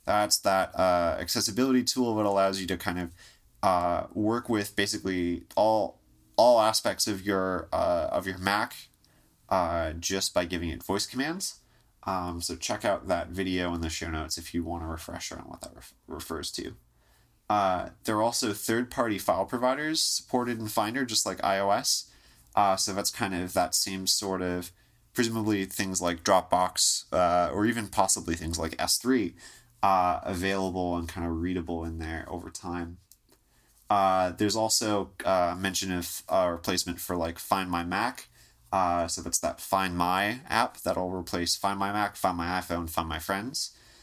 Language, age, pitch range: English, 30-49, 85-105 Hz